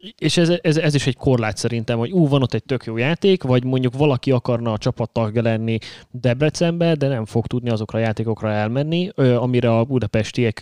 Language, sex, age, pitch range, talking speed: Hungarian, male, 20-39, 115-135 Hz, 210 wpm